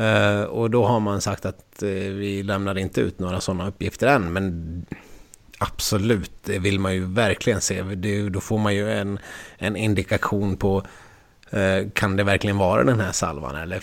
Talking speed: 165 wpm